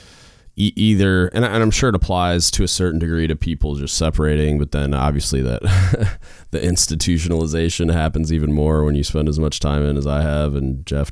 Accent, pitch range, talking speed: American, 75-90 Hz, 190 wpm